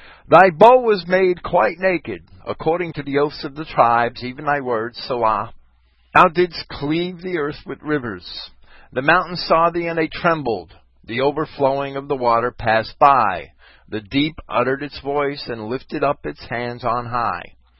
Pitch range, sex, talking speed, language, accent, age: 105-165 Hz, male, 170 wpm, English, American, 50-69